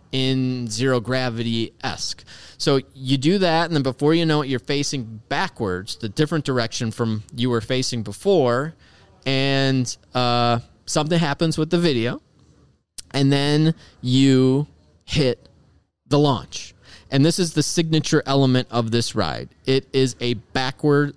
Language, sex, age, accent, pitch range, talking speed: English, male, 30-49, American, 115-155 Hz, 145 wpm